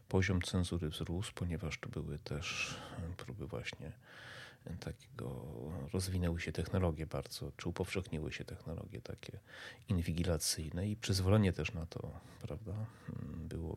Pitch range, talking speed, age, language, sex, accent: 90-110 Hz, 120 wpm, 30-49, Polish, male, native